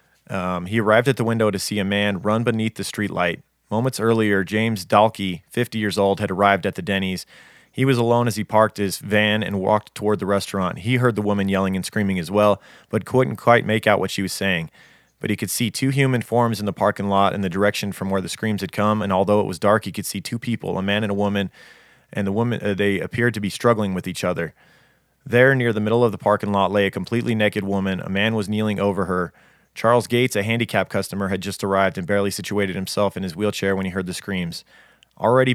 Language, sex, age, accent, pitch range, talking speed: English, male, 30-49, American, 95-110 Hz, 245 wpm